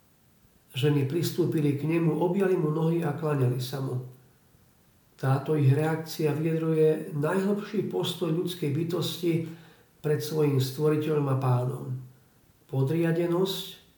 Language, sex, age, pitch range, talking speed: Slovak, male, 50-69, 140-175 Hz, 105 wpm